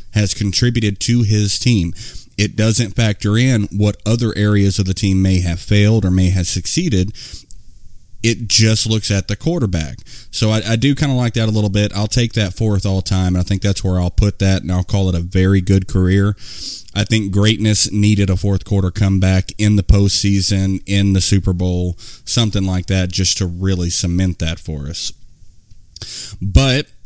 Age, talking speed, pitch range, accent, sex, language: 30-49, 195 wpm, 95-115 Hz, American, male, English